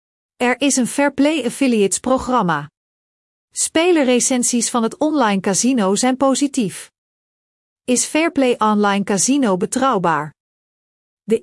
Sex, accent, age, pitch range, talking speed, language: female, Dutch, 40-59, 205-265 Hz, 95 wpm, Dutch